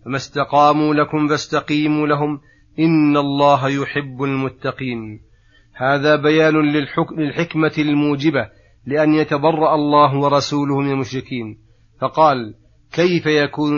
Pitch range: 130-155 Hz